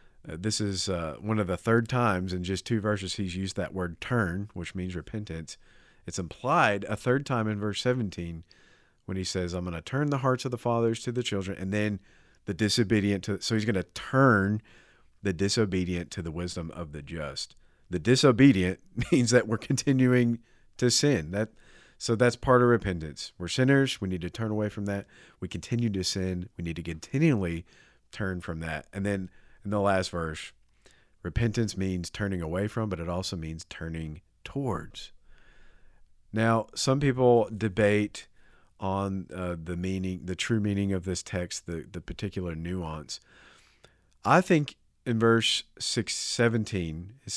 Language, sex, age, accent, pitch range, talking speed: English, male, 40-59, American, 90-115 Hz, 170 wpm